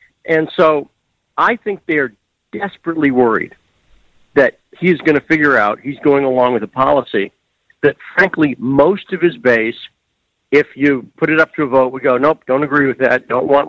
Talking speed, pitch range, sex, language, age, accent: 185 wpm, 130-165 Hz, male, English, 50-69, American